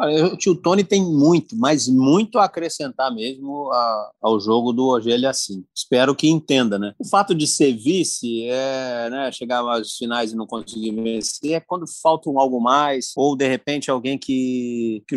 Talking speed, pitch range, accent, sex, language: 180 wpm, 130-170 Hz, Brazilian, male, Portuguese